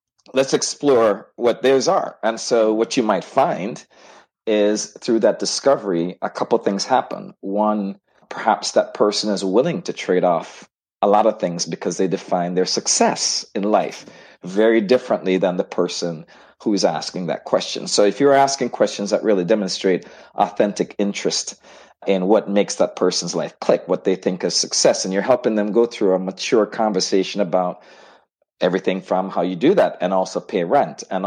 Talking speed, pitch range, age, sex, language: 175 wpm, 95-110 Hz, 40-59, male, English